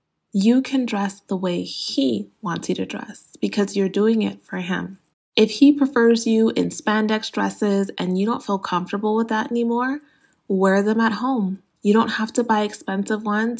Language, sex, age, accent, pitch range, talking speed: English, female, 20-39, American, 190-225 Hz, 185 wpm